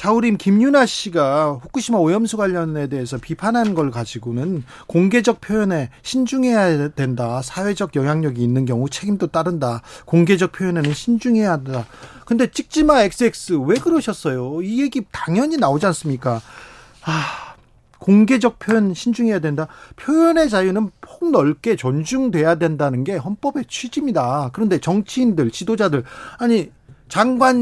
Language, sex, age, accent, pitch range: Korean, male, 40-59, native, 135-220 Hz